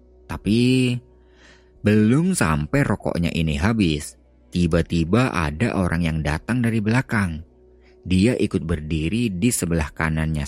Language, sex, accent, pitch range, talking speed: Indonesian, male, native, 70-105 Hz, 110 wpm